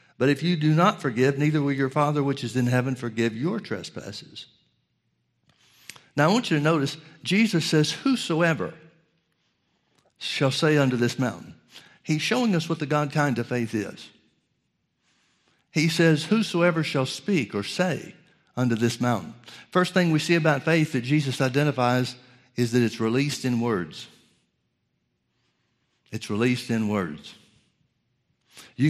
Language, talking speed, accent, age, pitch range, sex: English, 145 wpm, American, 60-79, 120-155 Hz, male